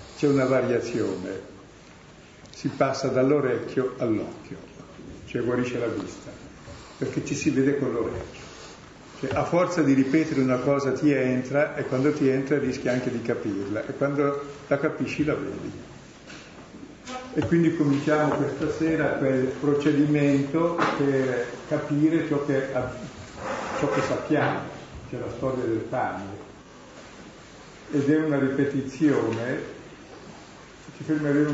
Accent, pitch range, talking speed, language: native, 125-145 Hz, 125 wpm, Italian